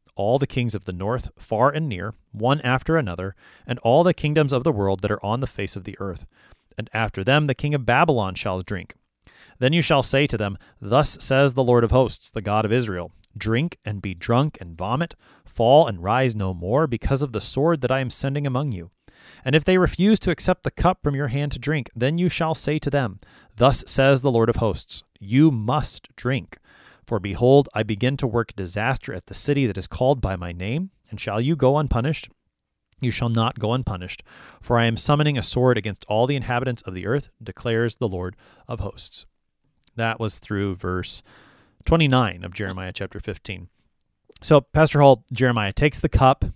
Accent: American